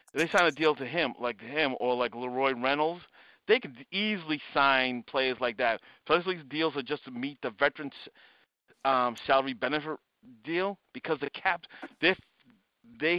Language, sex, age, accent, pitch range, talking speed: English, male, 50-69, American, 130-160 Hz, 170 wpm